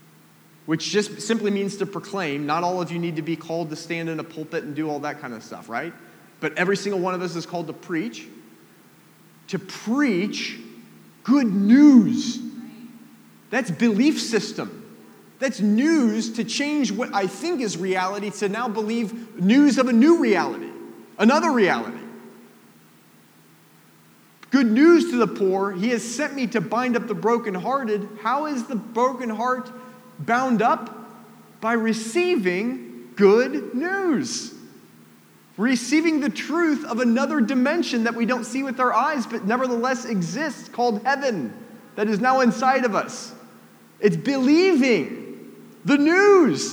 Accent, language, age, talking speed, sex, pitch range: American, English, 30-49, 150 wpm, male, 190-260 Hz